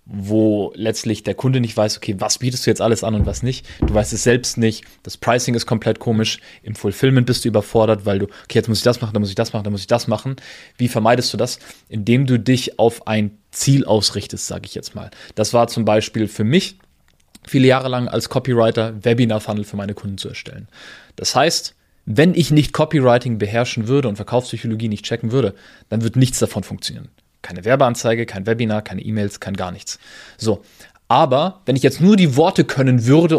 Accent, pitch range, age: German, 110-125 Hz, 20-39